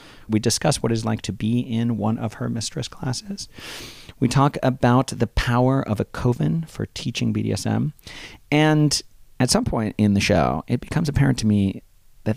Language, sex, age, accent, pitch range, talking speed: English, male, 40-59, American, 95-125 Hz, 180 wpm